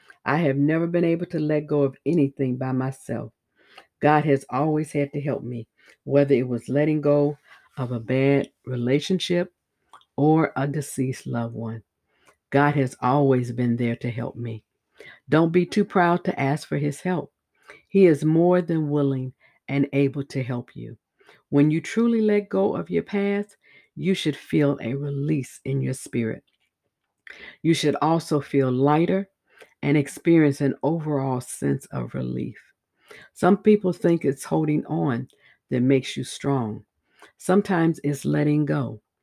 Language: English